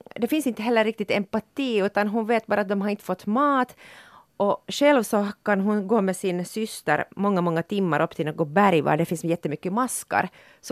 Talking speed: 220 wpm